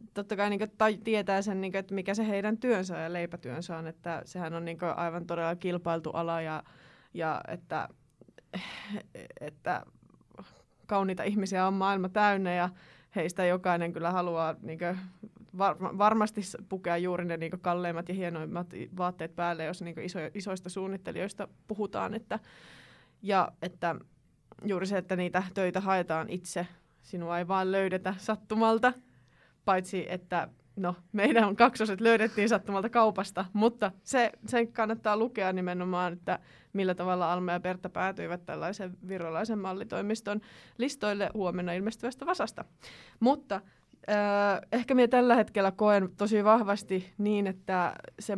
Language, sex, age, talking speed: Finnish, female, 20-39, 140 wpm